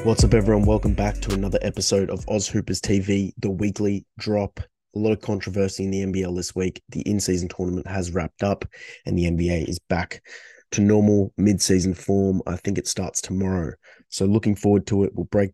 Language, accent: English, Australian